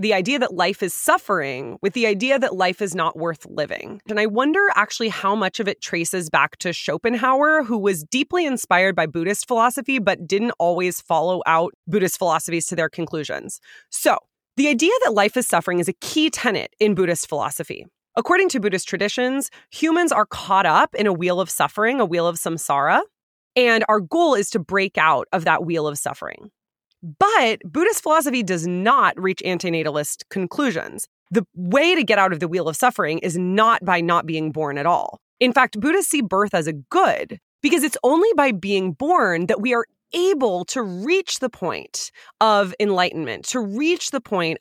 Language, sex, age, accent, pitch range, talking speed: English, female, 20-39, American, 170-245 Hz, 190 wpm